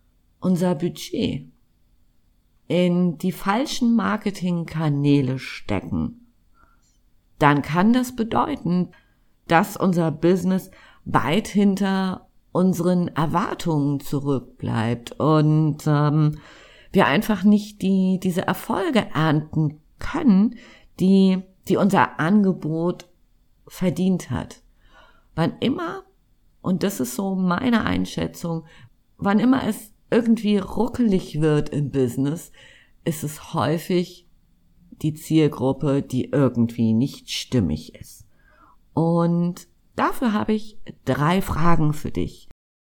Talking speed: 95 wpm